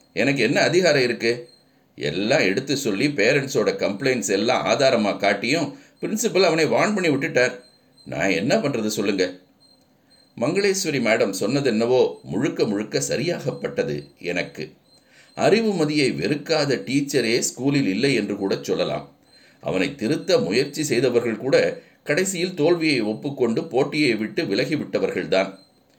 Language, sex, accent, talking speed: Tamil, male, native, 110 wpm